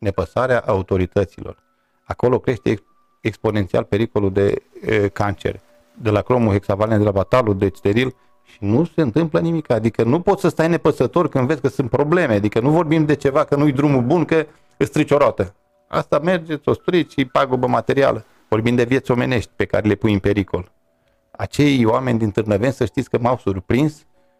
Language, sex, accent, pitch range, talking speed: Romanian, male, native, 110-145 Hz, 180 wpm